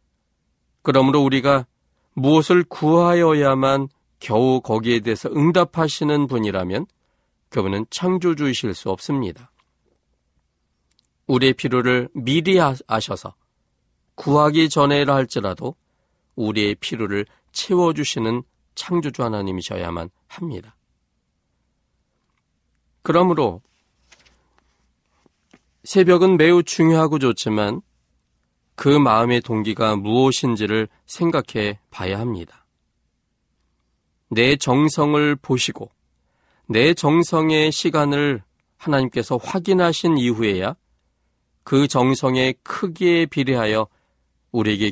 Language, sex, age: Korean, male, 40-59